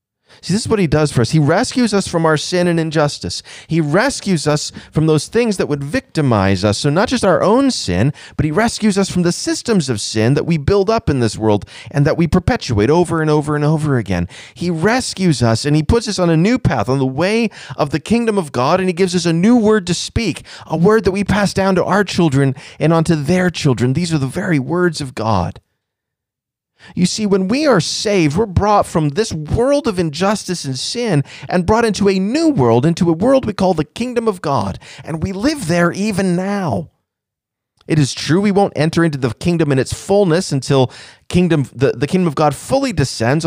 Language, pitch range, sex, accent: English, 140-200 Hz, male, American